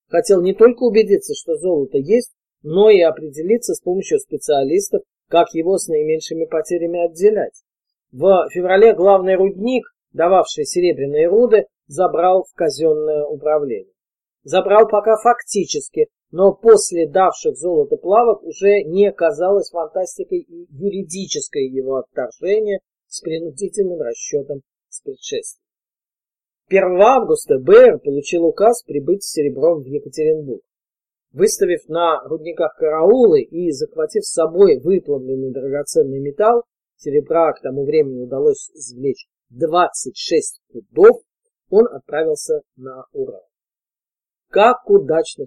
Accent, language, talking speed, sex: native, Russian, 115 wpm, male